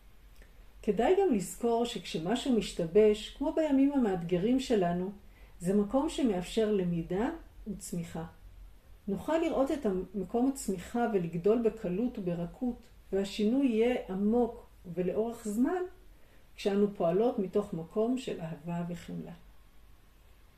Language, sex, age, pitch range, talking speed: Hebrew, female, 50-69, 175-240 Hz, 100 wpm